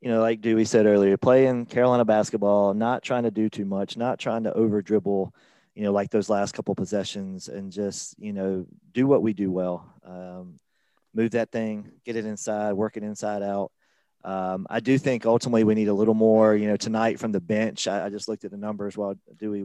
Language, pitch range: English, 95-110 Hz